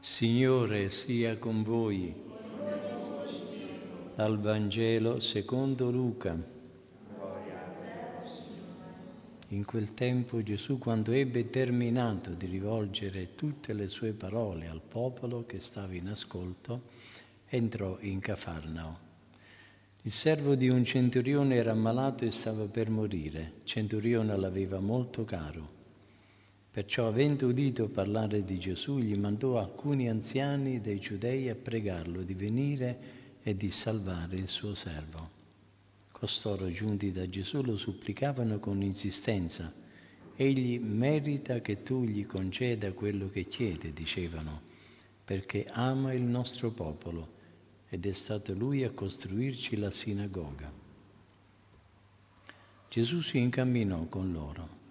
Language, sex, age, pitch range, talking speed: Italian, male, 50-69, 95-120 Hz, 115 wpm